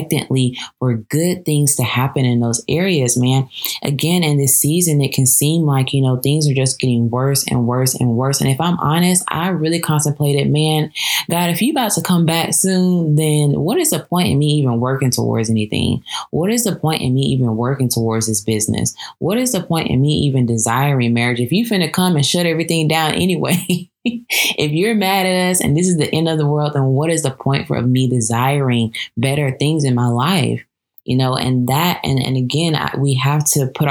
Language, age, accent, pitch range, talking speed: English, 20-39, American, 125-155 Hz, 215 wpm